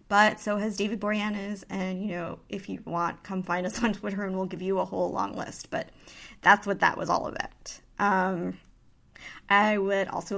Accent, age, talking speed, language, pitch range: American, 20-39, 210 wpm, English, 195-225 Hz